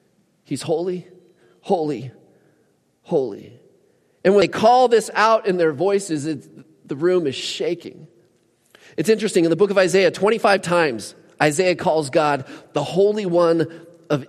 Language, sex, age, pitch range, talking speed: English, male, 30-49, 135-185 Hz, 140 wpm